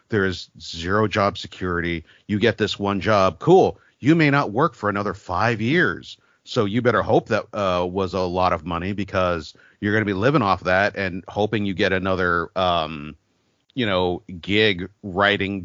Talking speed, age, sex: 185 wpm, 40-59, male